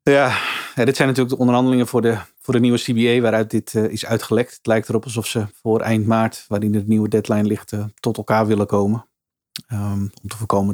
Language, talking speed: Dutch, 220 wpm